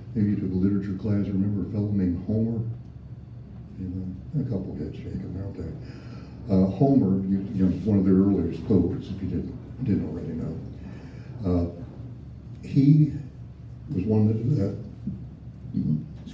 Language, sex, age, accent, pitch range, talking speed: English, male, 60-79, American, 90-120 Hz, 145 wpm